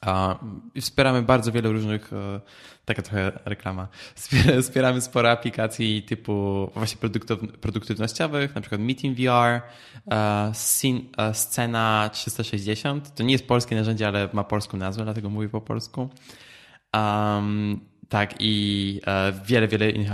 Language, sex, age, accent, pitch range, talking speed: Polish, male, 20-39, native, 105-125 Hz, 110 wpm